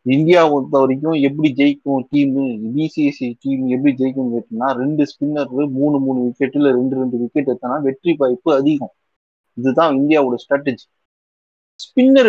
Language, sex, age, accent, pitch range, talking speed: Tamil, male, 30-49, native, 125-160 Hz, 115 wpm